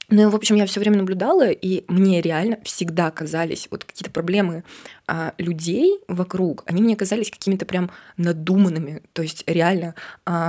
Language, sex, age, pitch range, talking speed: Russian, female, 20-39, 170-210 Hz, 160 wpm